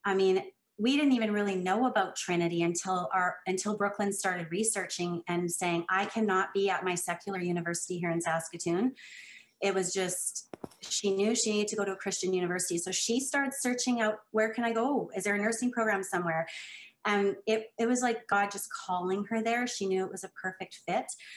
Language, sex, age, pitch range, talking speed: English, female, 30-49, 185-220 Hz, 200 wpm